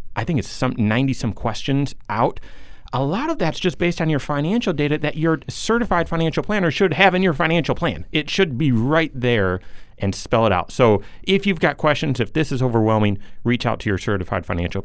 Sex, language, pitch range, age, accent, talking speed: male, English, 105-135 Hz, 30-49, American, 215 wpm